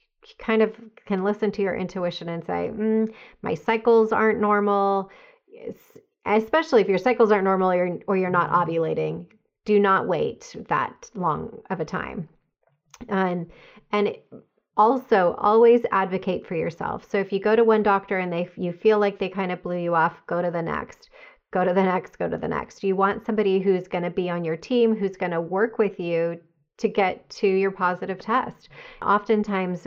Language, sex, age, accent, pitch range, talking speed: English, female, 30-49, American, 175-210 Hz, 190 wpm